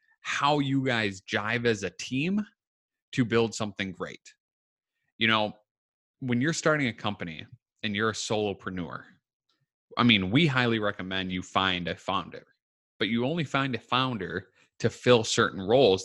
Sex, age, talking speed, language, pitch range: male, 20-39, 155 wpm, English, 95-130 Hz